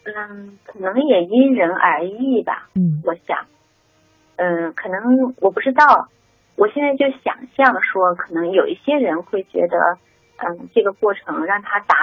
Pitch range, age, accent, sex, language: 180-255 Hz, 30-49, native, female, Chinese